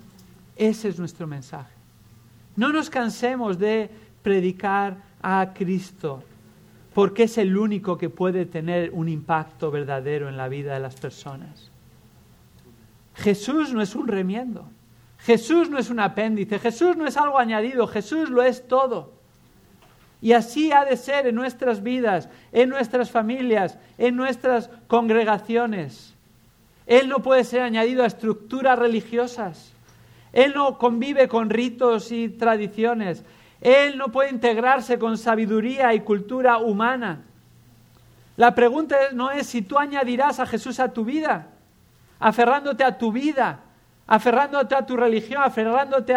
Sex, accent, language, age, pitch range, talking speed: male, Spanish, English, 50-69, 195-250 Hz, 135 wpm